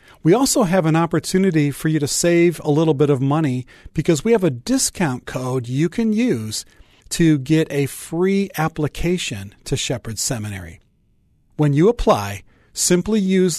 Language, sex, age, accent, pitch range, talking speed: English, male, 40-59, American, 120-165 Hz, 160 wpm